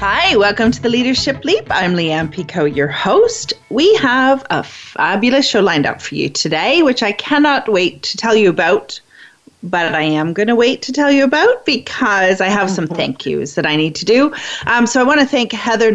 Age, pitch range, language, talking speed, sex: 40-59, 180-255 Hz, English, 215 wpm, female